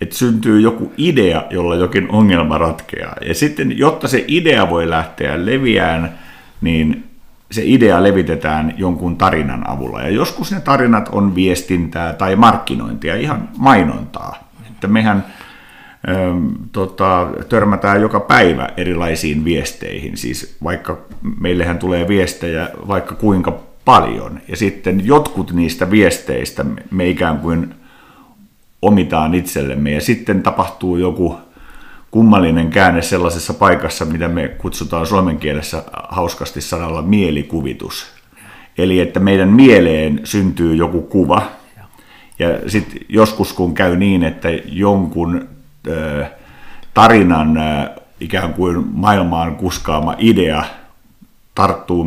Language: Finnish